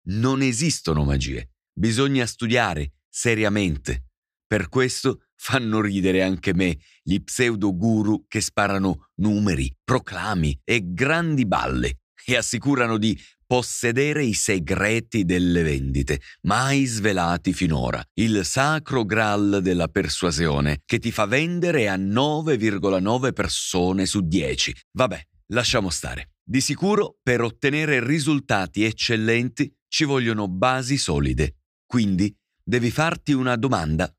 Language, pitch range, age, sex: Italian, 85-130 Hz, 40-59, male